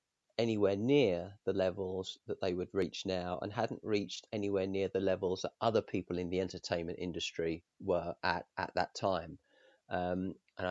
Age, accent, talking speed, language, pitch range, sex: 40-59, British, 170 wpm, English, 90-105 Hz, male